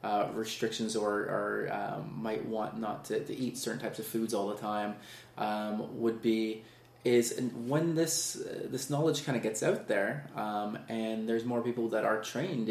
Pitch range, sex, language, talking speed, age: 115-140 Hz, male, English, 190 wpm, 20-39